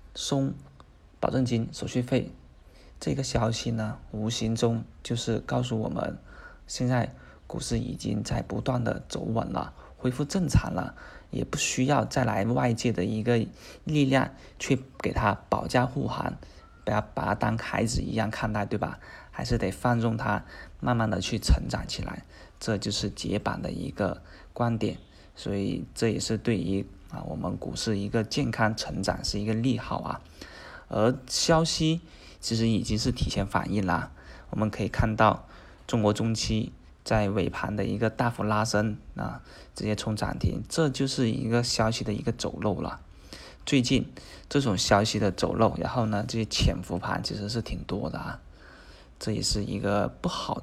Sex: male